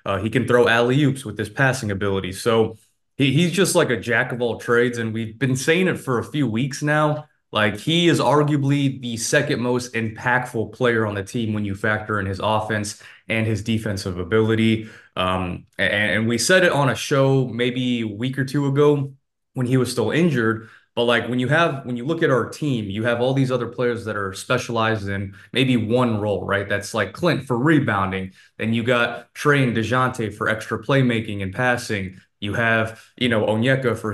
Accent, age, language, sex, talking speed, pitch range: American, 20-39, English, male, 200 wpm, 110-130 Hz